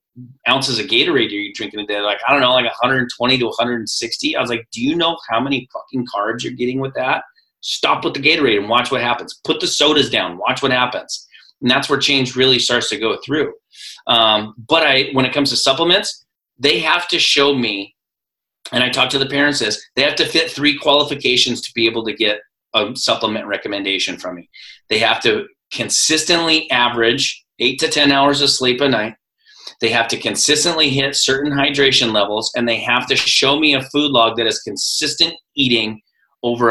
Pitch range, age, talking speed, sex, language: 115-140 Hz, 30-49, 205 wpm, male, English